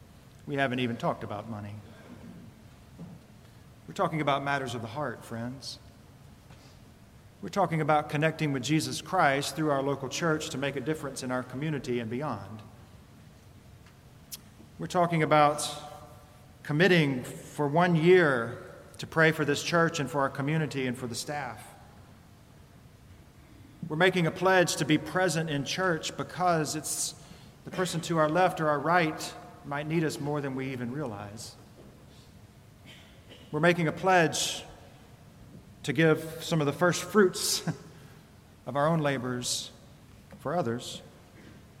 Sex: male